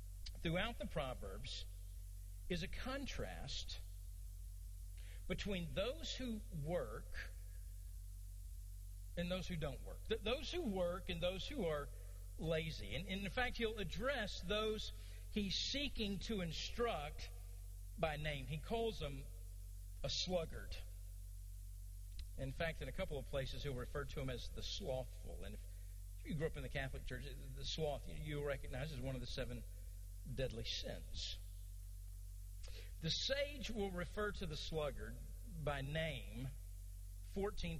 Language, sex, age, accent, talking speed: English, male, 50-69, American, 135 wpm